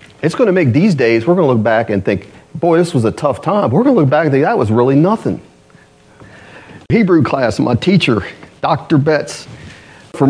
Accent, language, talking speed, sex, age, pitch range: American, English, 215 wpm, male, 40-59, 100-155 Hz